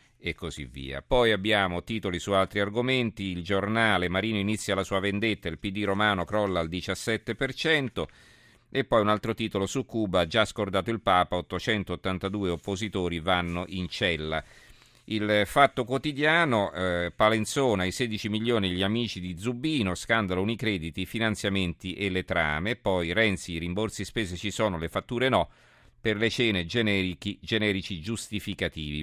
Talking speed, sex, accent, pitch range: 150 wpm, male, native, 90-115 Hz